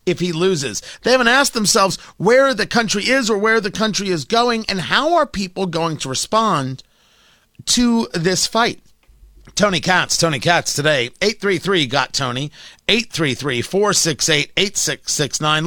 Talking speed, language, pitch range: 135 wpm, English, 145-195 Hz